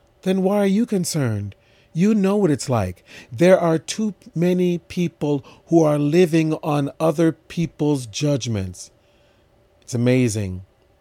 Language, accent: English, American